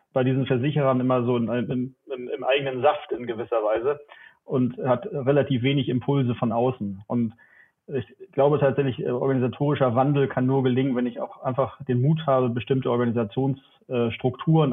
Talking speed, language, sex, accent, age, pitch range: 145 wpm, German, male, German, 30-49, 125-135 Hz